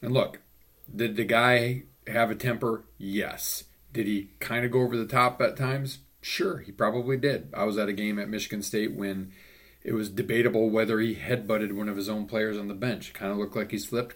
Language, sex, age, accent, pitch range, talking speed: English, male, 40-59, American, 95-115 Hz, 220 wpm